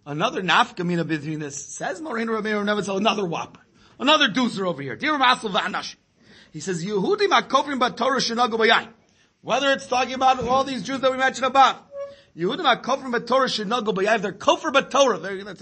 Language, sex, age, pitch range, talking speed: English, male, 40-59, 215-260 Hz, 165 wpm